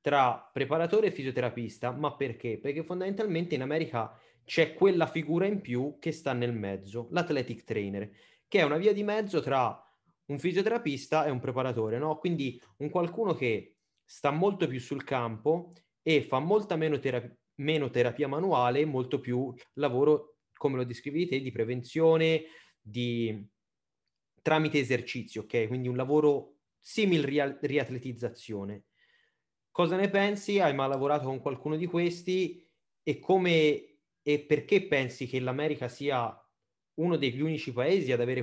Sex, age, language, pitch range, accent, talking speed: male, 30-49, Italian, 125-160 Hz, native, 145 wpm